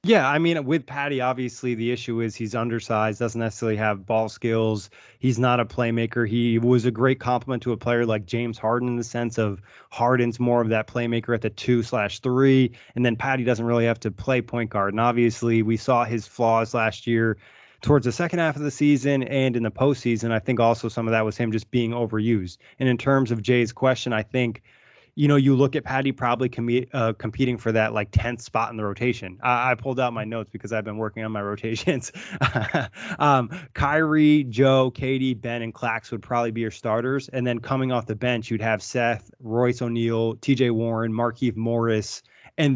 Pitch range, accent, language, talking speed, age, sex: 115-125 Hz, American, English, 215 wpm, 20-39, male